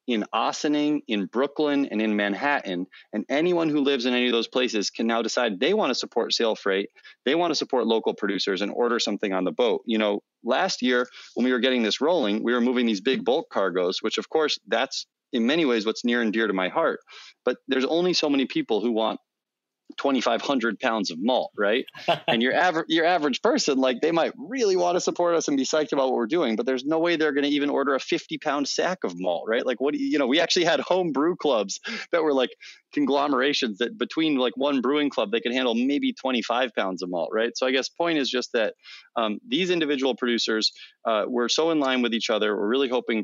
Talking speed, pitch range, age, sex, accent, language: 235 wpm, 110-155 Hz, 30-49, male, American, English